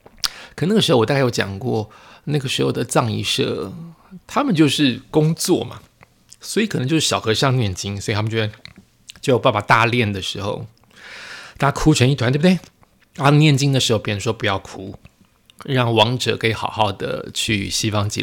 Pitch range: 120-170 Hz